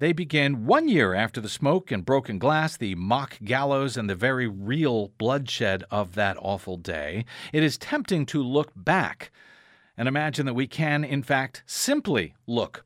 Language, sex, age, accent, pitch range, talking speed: English, male, 50-69, American, 115-175 Hz, 175 wpm